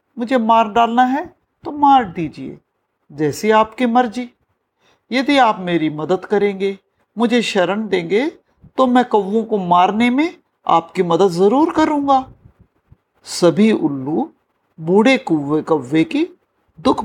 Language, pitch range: Hindi, 170-240 Hz